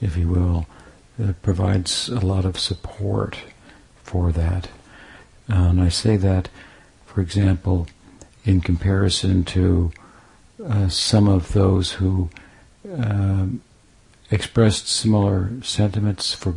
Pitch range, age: 90-100 Hz, 60-79